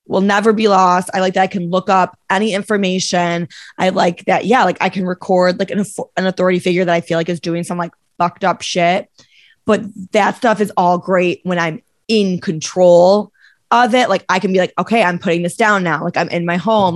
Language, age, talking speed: English, 20-39, 230 wpm